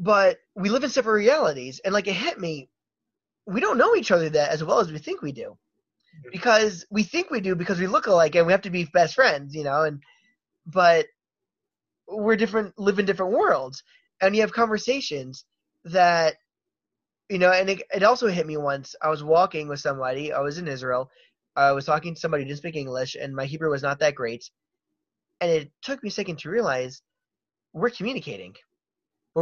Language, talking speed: English, 205 wpm